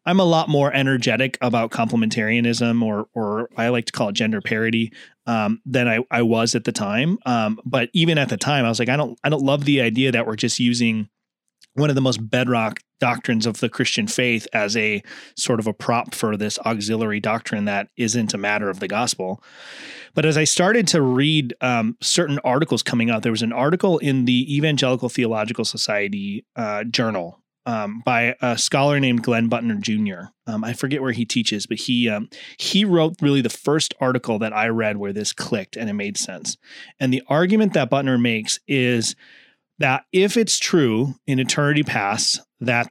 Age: 30-49